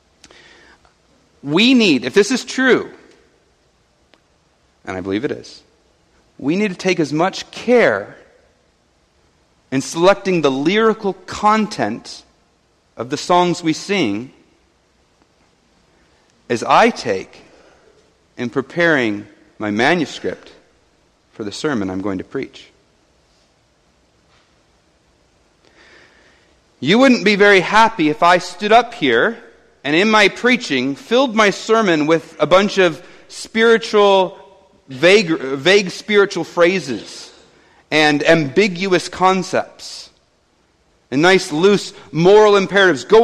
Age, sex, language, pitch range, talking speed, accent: 40-59, male, English, 145-205 Hz, 105 wpm, American